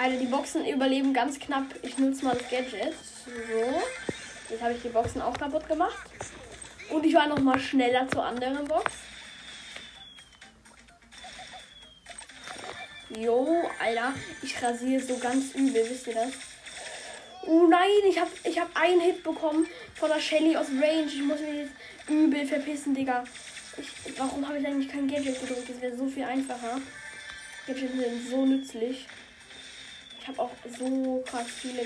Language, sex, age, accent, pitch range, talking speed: German, female, 10-29, German, 245-335 Hz, 155 wpm